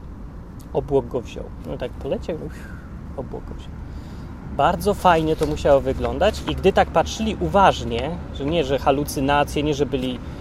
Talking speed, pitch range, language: 150 wpm, 140-185 Hz, Polish